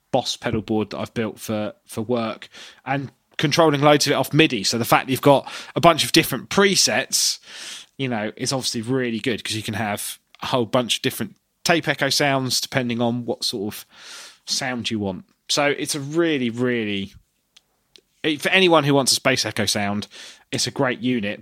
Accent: British